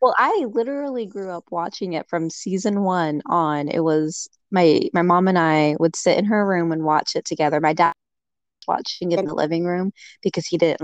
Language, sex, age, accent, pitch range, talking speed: English, female, 20-39, American, 165-200 Hz, 220 wpm